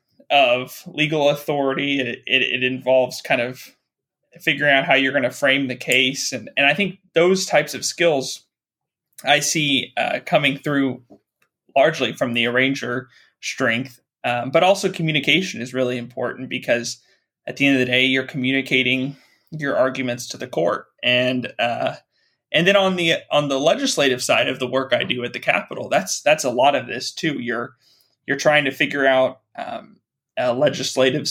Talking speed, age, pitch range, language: 175 wpm, 20-39, 125-140 Hz, English